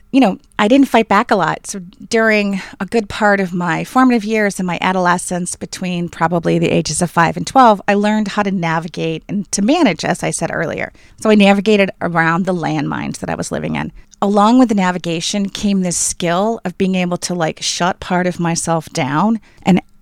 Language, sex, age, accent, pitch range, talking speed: English, female, 30-49, American, 175-215 Hz, 205 wpm